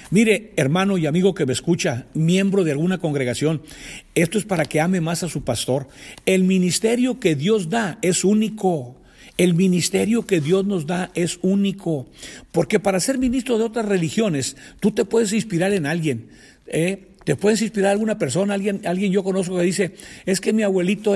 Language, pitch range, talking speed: Spanish, 170-210 Hz, 175 wpm